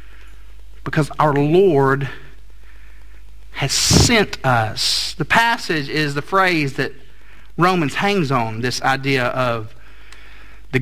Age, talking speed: 50-69, 105 wpm